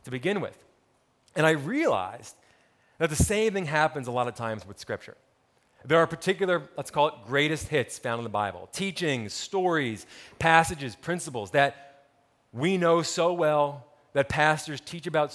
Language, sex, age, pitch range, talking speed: English, male, 30-49, 130-170 Hz, 165 wpm